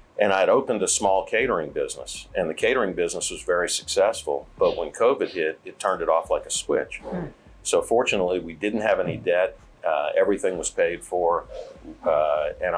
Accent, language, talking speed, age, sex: American, English, 190 wpm, 50-69, male